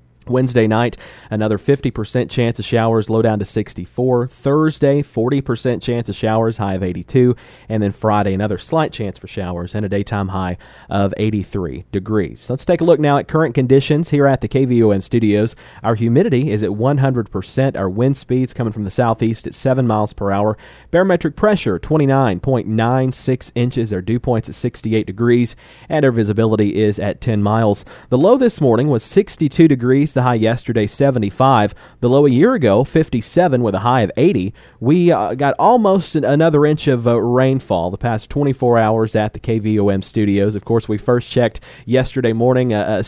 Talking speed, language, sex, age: 180 wpm, English, male, 30-49